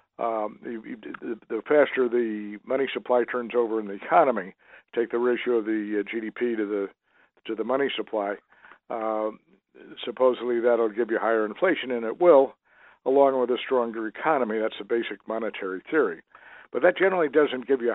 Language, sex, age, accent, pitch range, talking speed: English, male, 60-79, American, 115-135 Hz, 170 wpm